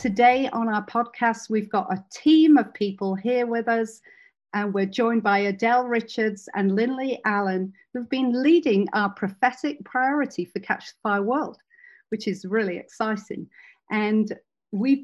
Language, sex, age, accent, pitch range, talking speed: English, female, 40-59, British, 200-240 Hz, 155 wpm